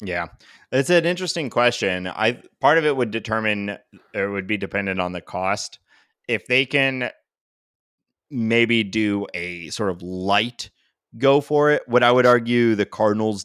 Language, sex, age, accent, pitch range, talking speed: English, male, 30-49, American, 90-115 Hz, 165 wpm